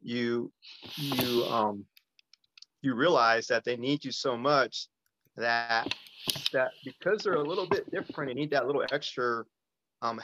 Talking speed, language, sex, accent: 145 wpm, English, male, American